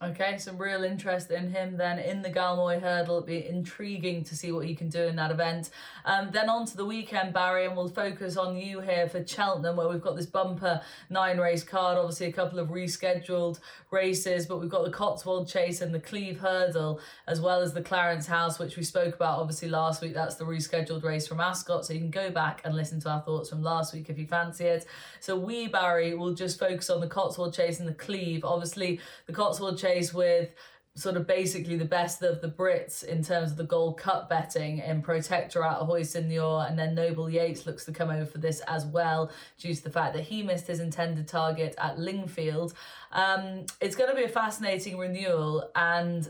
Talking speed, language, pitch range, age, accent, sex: 215 wpm, English, 160-185 Hz, 20-39, British, female